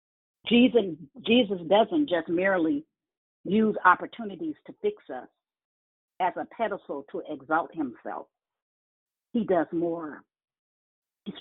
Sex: female